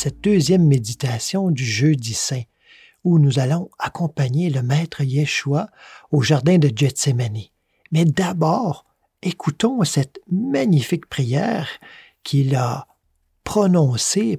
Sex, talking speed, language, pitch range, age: male, 110 wpm, French, 125-175 Hz, 50-69